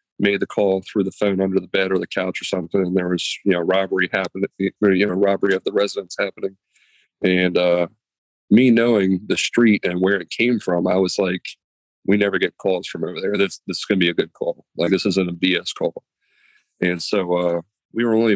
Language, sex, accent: English, male, American